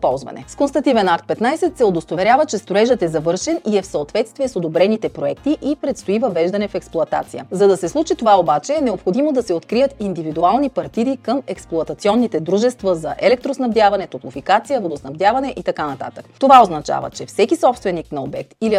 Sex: female